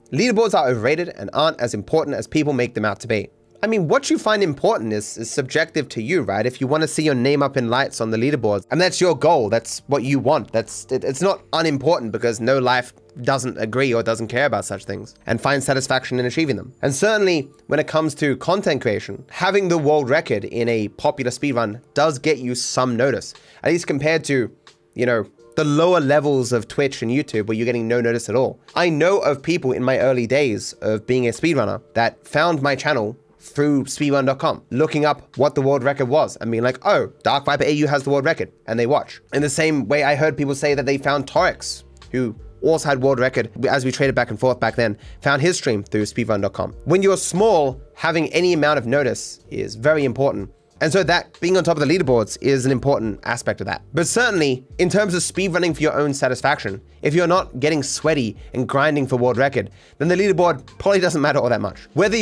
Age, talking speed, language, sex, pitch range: 20-39, 225 wpm, English, male, 120-155 Hz